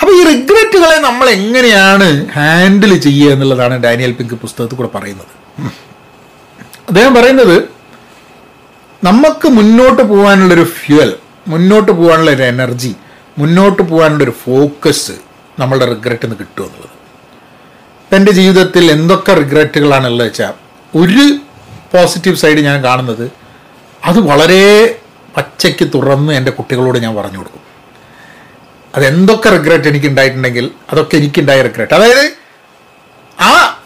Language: Malayalam